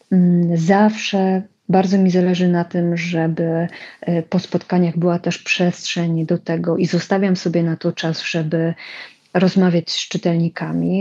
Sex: female